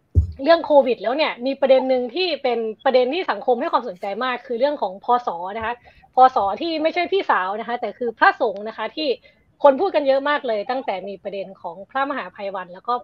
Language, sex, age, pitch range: Thai, female, 20-39, 210-280 Hz